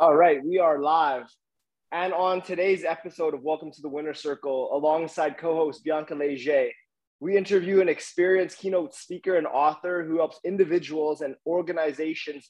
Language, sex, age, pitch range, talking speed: English, male, 20-39, 155-180 Hz, 155 wpm